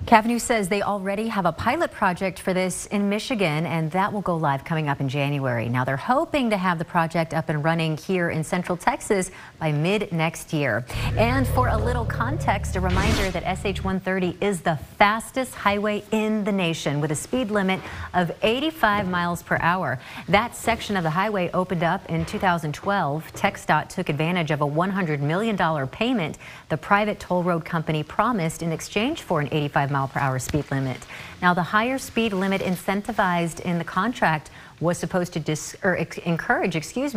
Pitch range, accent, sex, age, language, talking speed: 155-200 Hz, American, female, 40-59, English, 180 wpm